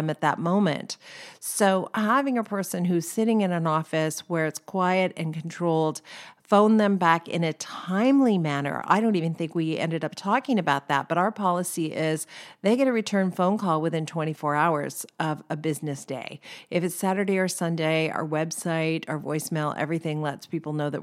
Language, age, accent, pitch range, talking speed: English, 50-69, American, 155-185 Hz, 185 wpm